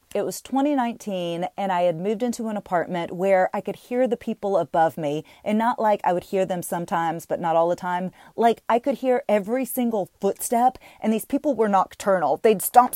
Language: English